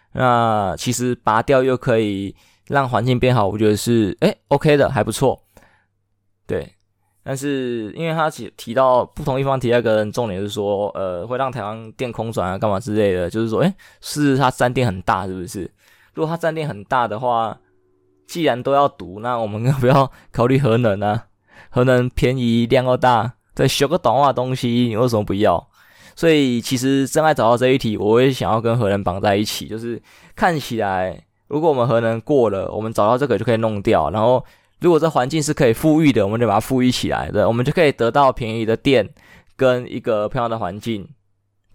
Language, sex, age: Chinese, male, 20-39